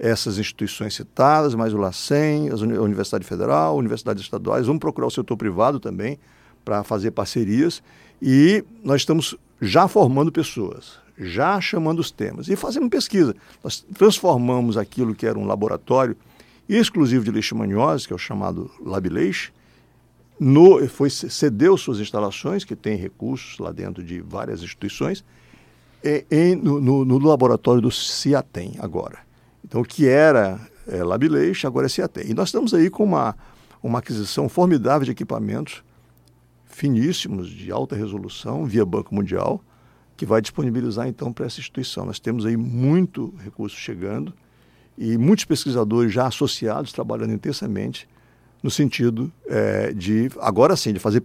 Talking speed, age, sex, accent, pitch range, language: 145 wpm, 60-79, male, Brazilian, 110-150 Hz, Portuguese